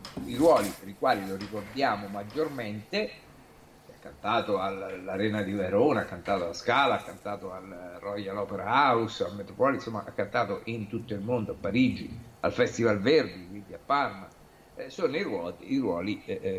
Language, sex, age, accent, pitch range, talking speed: Italian, male, 50-69, native, 95-115 Hz, 165 wpm